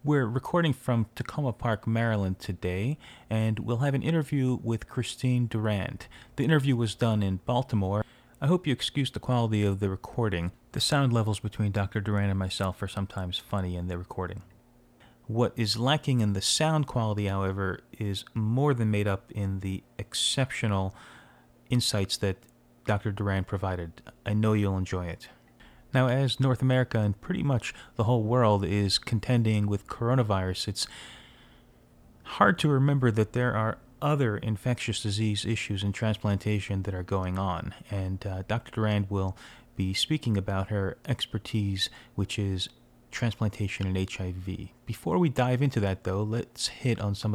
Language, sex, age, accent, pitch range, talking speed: English, male, 30-49, American, 100-125 Hz, 160 wpm